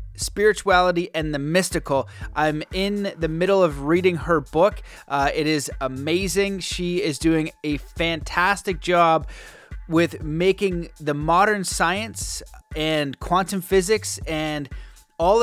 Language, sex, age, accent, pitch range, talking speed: English, male, 30-49, American, 150-180 Hz, 125 wpm